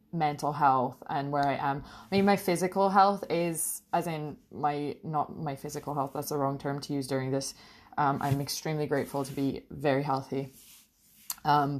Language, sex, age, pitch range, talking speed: English, female, 20-39, 140-160 Hz, 185 wpm